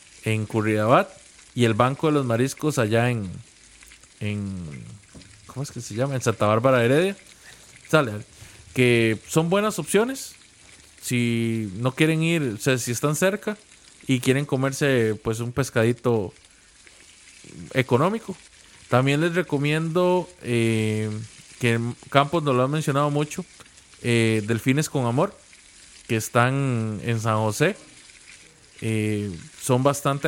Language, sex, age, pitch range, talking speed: Spanish, male, 20-39, 110-150 Hz, 125 wpm